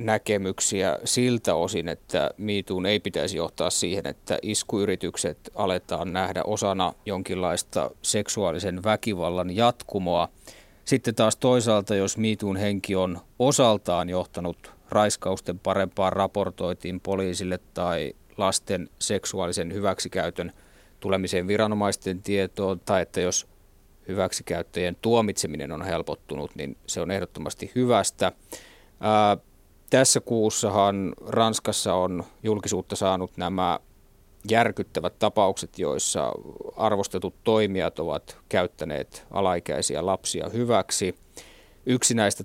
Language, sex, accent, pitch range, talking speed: Finnish, male, native, 90-110 Hz, 100 wpm